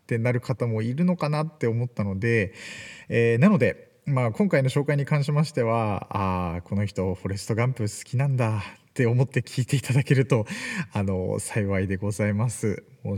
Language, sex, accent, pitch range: Japanese, male, native, 110-140 Hz